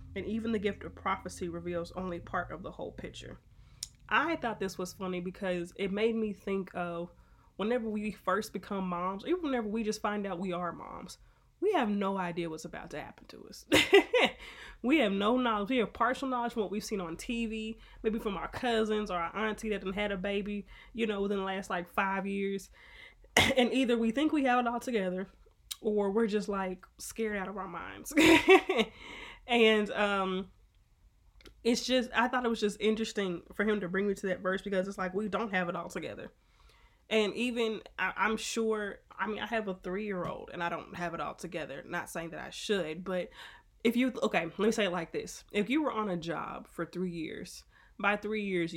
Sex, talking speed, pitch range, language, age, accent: female, 210 wpm, 180-225 Hz, English, 20-39, American